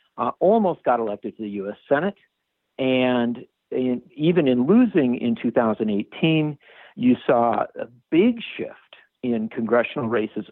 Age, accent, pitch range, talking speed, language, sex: 50-69, American, 115-180 Hz, 125 wpm, English, male